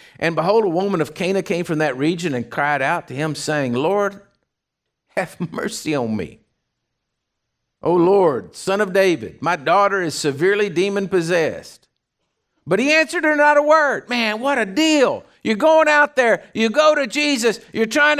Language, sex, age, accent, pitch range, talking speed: English, male, 50-69, American, 175-275 Hz, 175 wpm